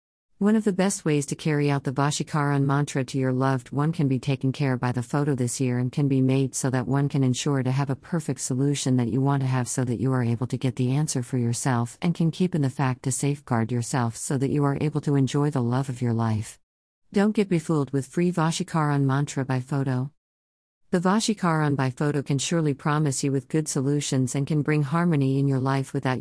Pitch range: 130-150 Hz